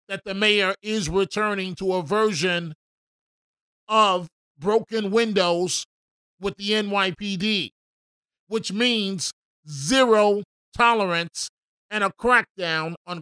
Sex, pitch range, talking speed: male, 175-215 Hz, 100 wpm